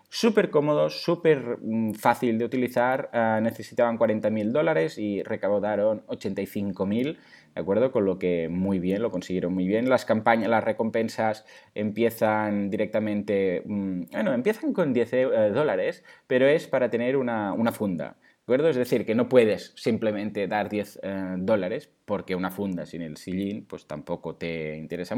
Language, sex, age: Spanish, male, 30-49